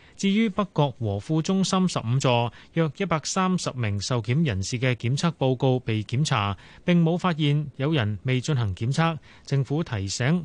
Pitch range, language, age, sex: 120-160 Hz, Chinese, 30-49, male